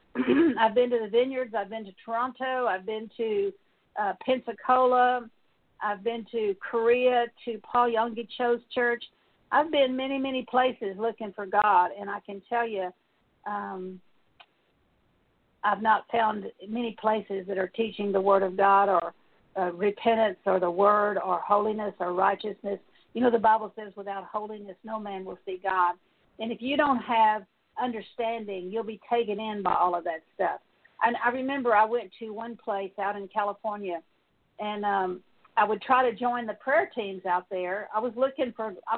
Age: 50-69